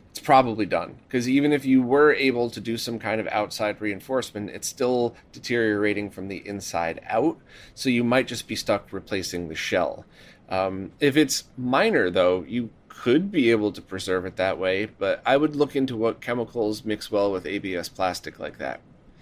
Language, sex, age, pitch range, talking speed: English, male, 30-49, 100-140 Hz, 185 wpm